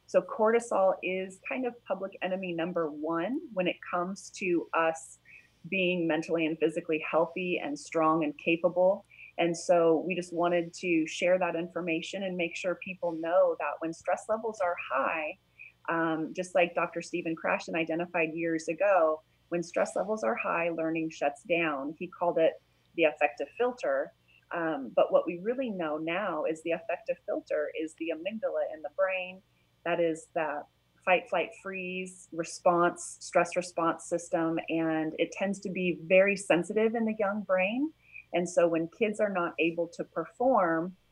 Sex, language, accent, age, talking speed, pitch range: female, English, American, 30-49, 160 wpm, 160-185 Hz